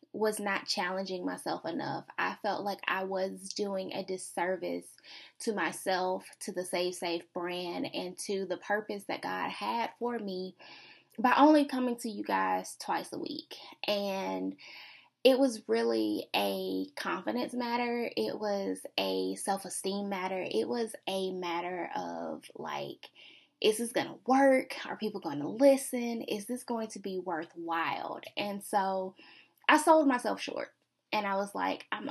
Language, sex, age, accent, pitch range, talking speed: English, female, 10-29, American, 180-240 Hz, 155 wpm